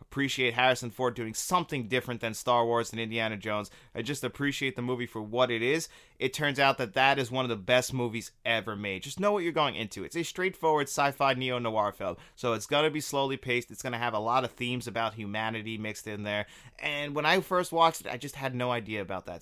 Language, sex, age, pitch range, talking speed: English, male, 30-49, 115-150 Hz, 245 wpm